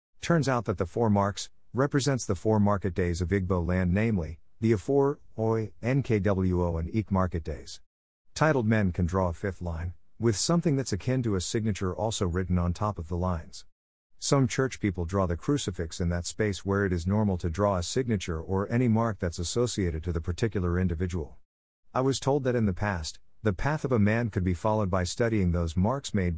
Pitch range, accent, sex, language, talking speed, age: 90-115 Hz, American, male, English, 205 wpm, 50-69